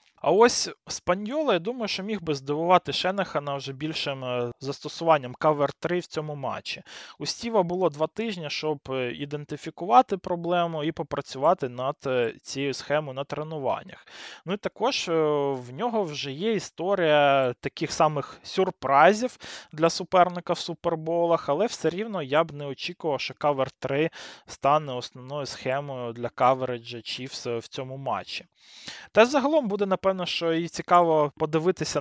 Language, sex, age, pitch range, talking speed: Ukrainian, male, 20-39, 140-180 Hz, 135 wpm